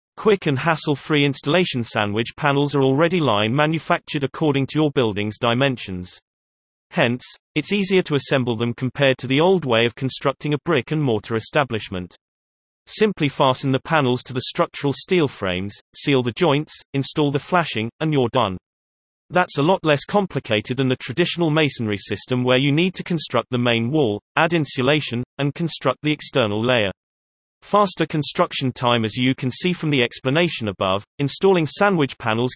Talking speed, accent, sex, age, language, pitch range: 165 wpm, British, male, 30-49, English, 115-155 Hz